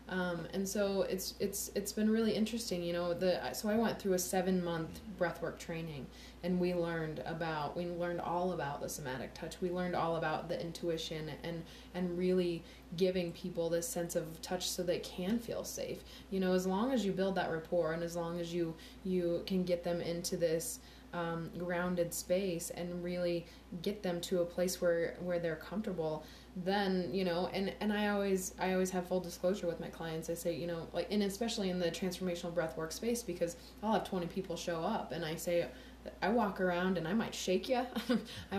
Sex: female